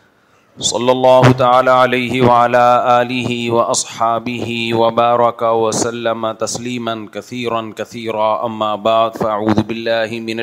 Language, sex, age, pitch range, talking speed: Urdu, male, 30-49, 115-125 Hz, 65 wpm